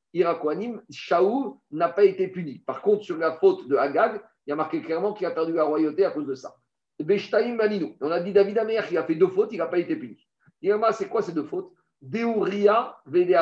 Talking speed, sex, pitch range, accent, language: 235 wpm, male, 150-210 Hz, French, French